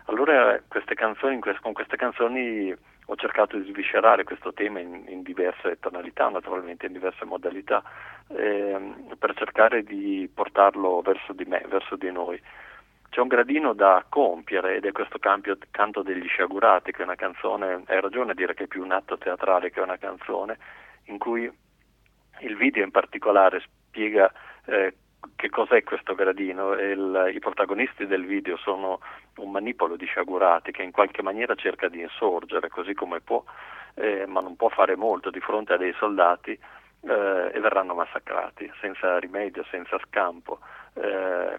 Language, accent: Italian, native